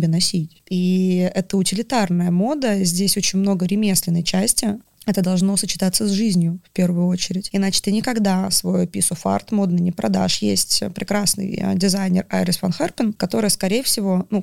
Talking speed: 155 wpm